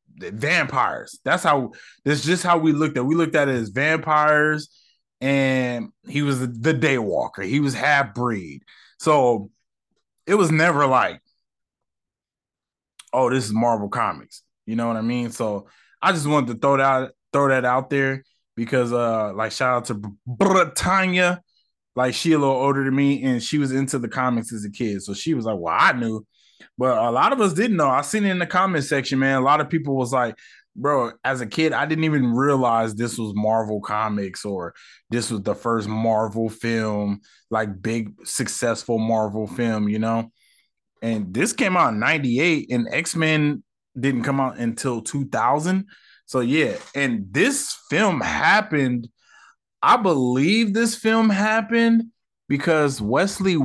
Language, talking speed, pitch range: English, 175 wpm, 115-155 Hz